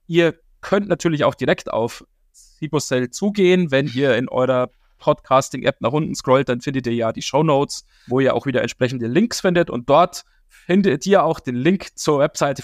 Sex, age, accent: male, 30-49, German